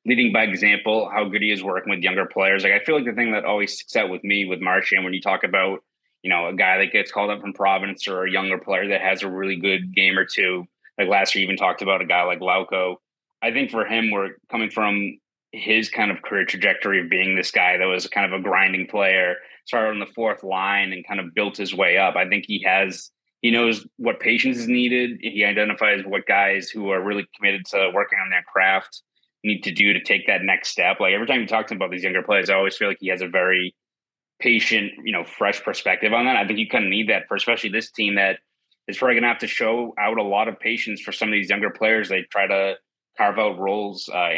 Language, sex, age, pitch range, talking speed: English, male, 30-49, 95-110 Hz, 260 wpm